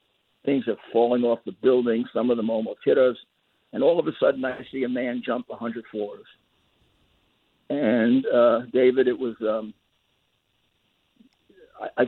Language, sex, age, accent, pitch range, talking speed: English, male, 50-69, American, 115-160 Hz, 155 wpm